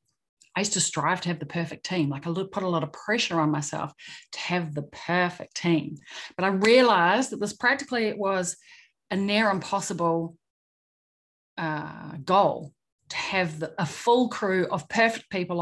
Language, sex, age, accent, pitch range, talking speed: English, female, 30-49, Australian, 170-225 Hz, 165 wpm